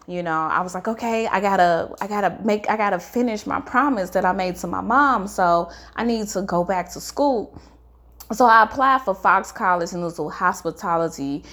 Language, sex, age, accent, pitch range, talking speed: English, female, 20-39, American, 170-230 Hz, 210 wpm